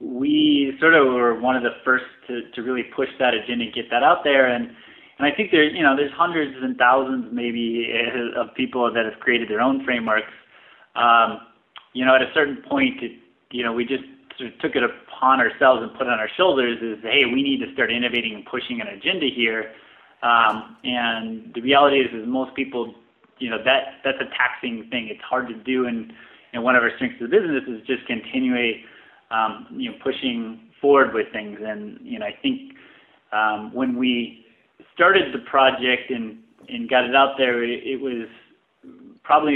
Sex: male